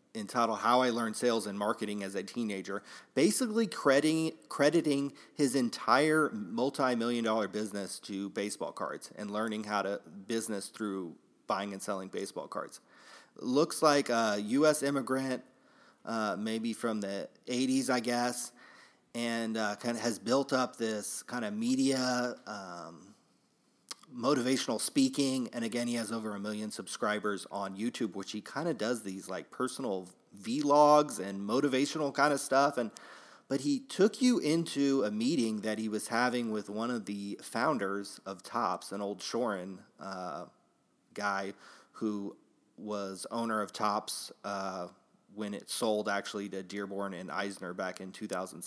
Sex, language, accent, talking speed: male, English, American, 150 wpm